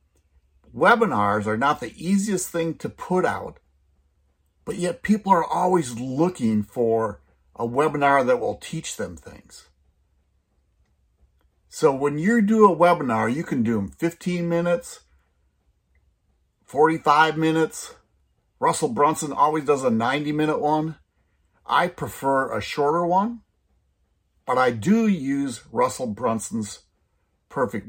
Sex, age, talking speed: male, 60-79, 120 wpm